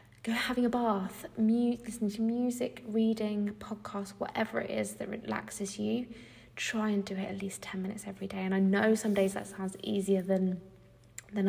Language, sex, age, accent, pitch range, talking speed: English, female, 20-39, British, 195-215 Hz, 190 wpm